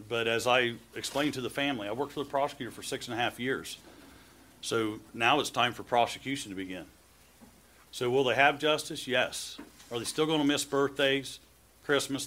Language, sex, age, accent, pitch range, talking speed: English, male, 40-59, American, 110-140 Hz, 195 wpm